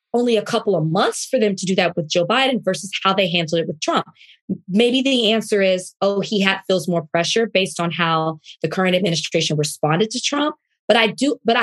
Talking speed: 215 wpm